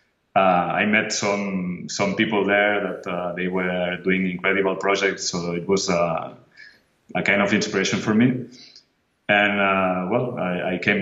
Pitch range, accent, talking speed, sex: 95-105 Hz, Spanish, 165 wpm, male